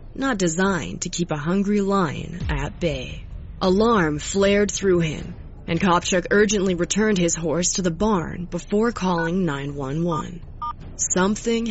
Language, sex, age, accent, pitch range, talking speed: English, female, 20-39, American, 160-205 Hz, 135 wpm